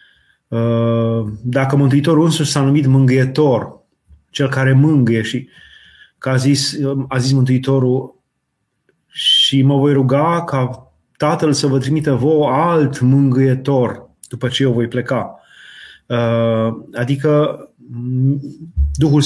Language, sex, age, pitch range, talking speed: Romanian, male, 30-49, 125-145 Hz, 110 wpm